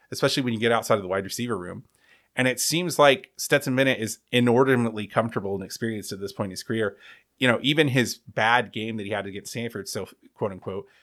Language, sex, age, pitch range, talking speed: English, male, 30-49, 105-135 Hz, 230 wpm